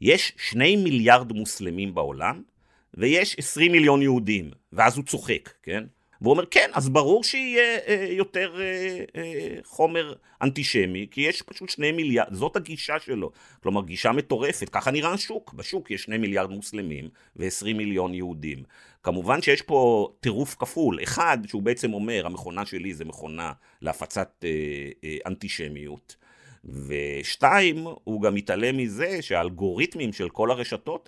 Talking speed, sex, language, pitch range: 130 wpm, male, Hebrew, 95-150 Hz